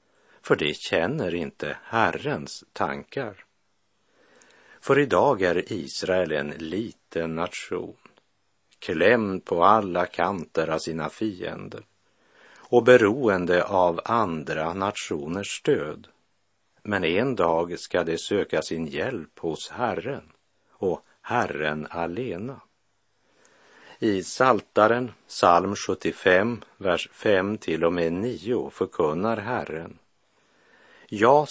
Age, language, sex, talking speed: 60-79, Swedish, male, 100 wpm